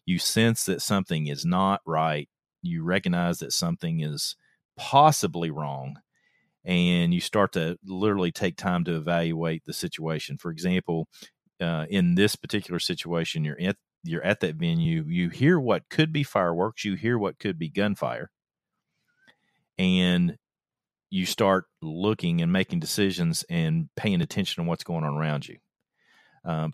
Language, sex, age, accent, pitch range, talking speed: English, male, 40-59, American, 80-110 Hz, 150 wpm